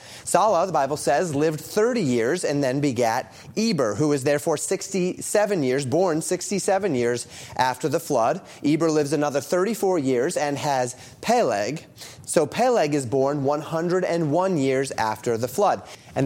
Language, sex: English, male